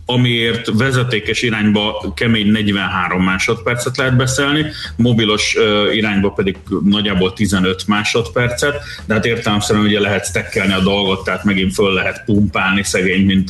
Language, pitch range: Hungarian, 95-130 Hz